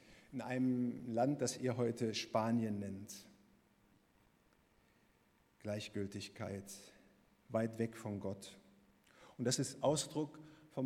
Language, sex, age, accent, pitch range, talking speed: German, male, 50-69, German, 105-145 Hz, 100 wpm